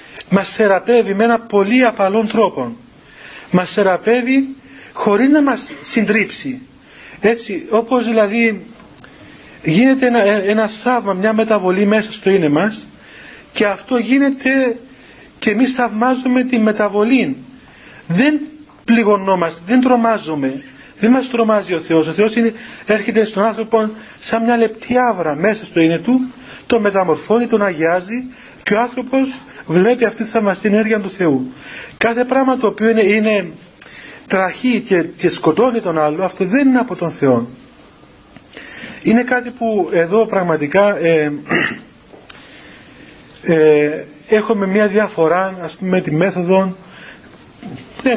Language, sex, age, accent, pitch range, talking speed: Greek, male, 40-59, native, 185-240 Hz, 130 wpm